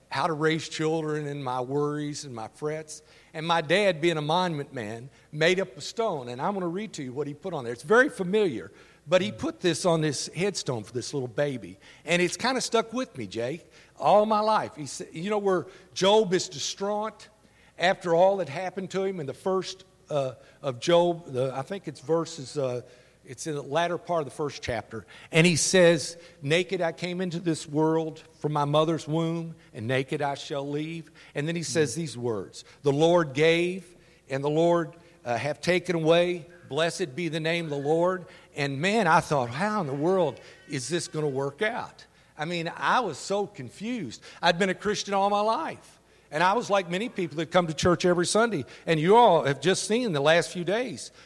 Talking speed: 215 wpm